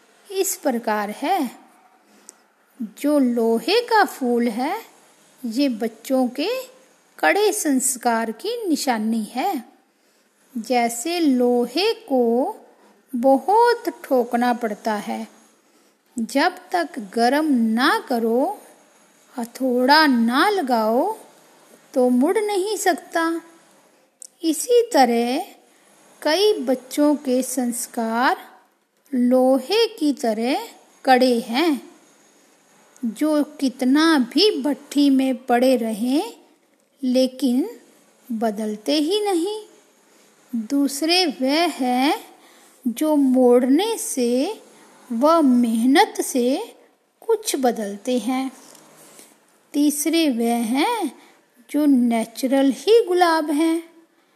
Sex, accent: female, native